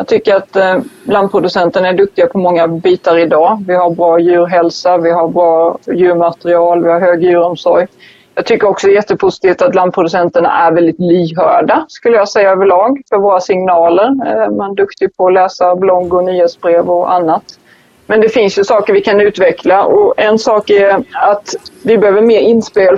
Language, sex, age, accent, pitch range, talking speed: Swedish, female, 30-49, native, 175-205 Hz, 175 wpm